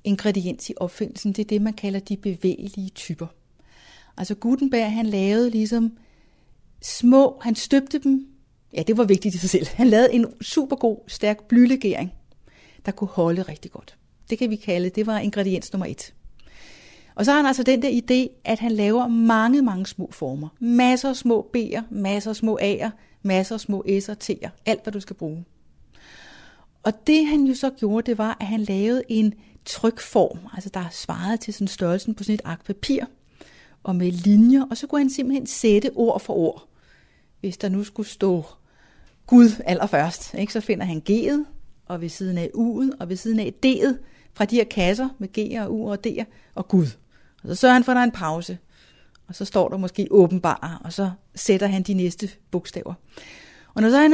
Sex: female